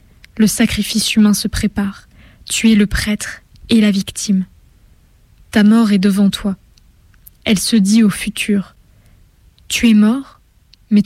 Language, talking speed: French, 140 wpm